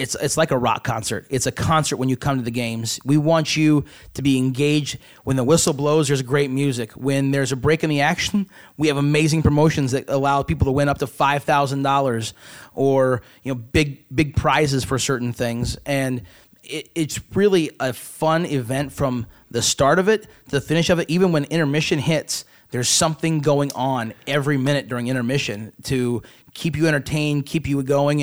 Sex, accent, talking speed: male, American, 200 wpm